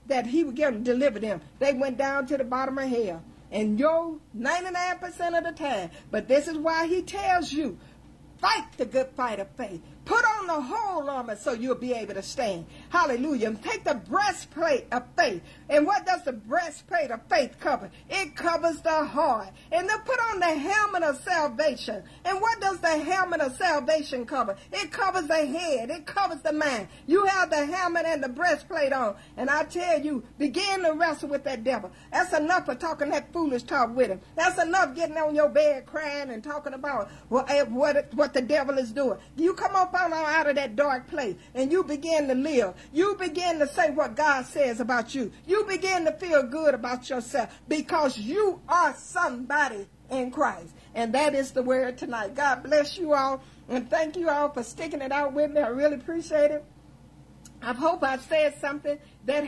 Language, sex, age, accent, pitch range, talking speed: English, female, 50-69, American, 270-340 Hz, 200 wpm